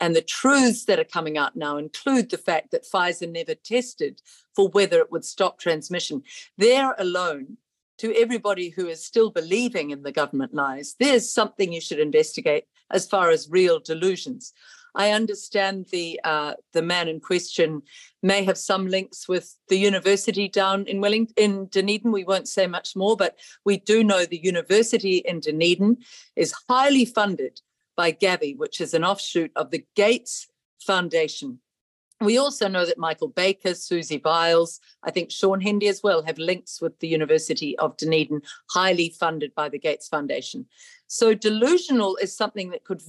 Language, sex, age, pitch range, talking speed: English, female, 50-69, 170-230 Hz, 170 wpm